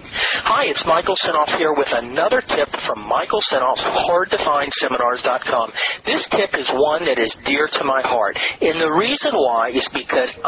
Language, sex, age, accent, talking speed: English, male, 40-59, American, 160 wpm